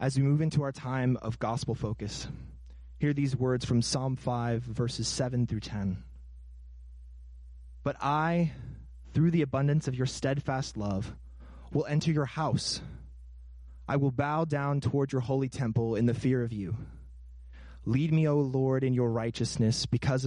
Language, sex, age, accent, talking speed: English, male, 20-39, American, 155 wpm